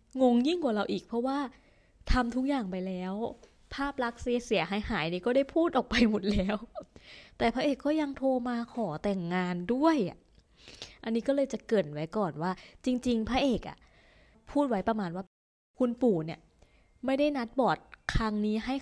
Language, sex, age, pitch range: Thai, female, 20-39, 185-250 Hz